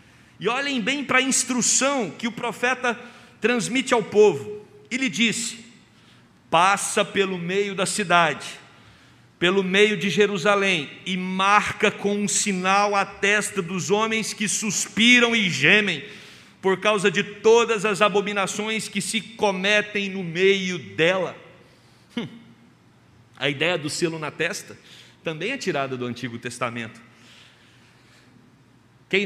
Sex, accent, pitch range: male, Brazilian, 135-205 Hz